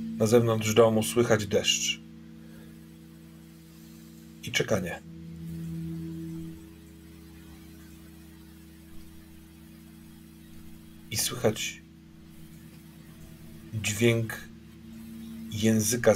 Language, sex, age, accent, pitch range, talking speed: Polish, male, 40-59, native, 80-110 Hz, 40 wpm